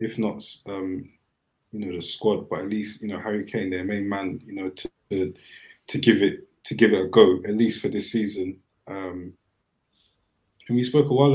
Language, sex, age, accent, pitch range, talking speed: English, male, 20-39, British, 95-120 Hz, 210 wpm